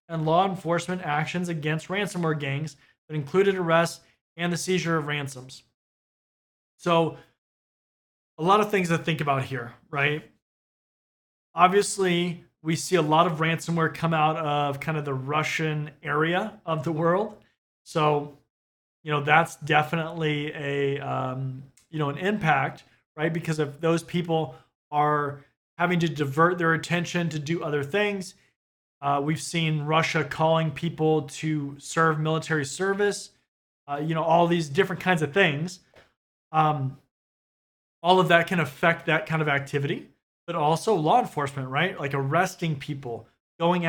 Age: 30-49